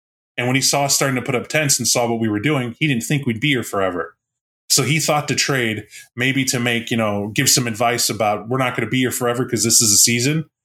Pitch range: 110-140 Hz